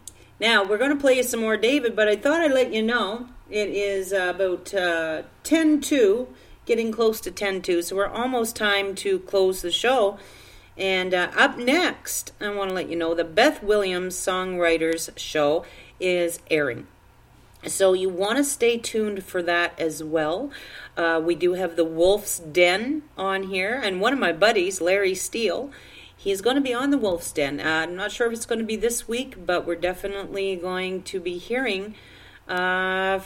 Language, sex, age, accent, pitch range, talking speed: English, female, 40-59, American, 175-225 Hz, 185 wpm